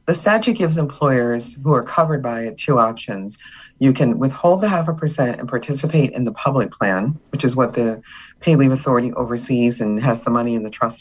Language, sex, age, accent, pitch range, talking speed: English, female, 40-59, American, 115-145 Hz, 215 wpm